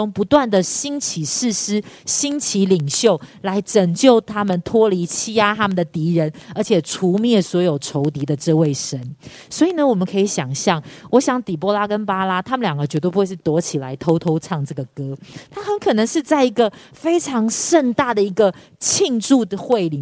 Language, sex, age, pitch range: Chinese, female, 40-59, 170-245 Hz